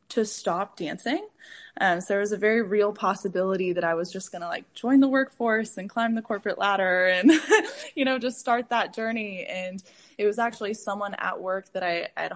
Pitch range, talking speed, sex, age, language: 185-245 Hz, 210 wpm, female, 10-29, English